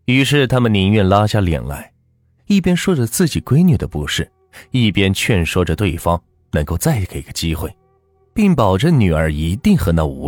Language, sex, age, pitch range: Chinese, male, 30-49, 85-135 Hz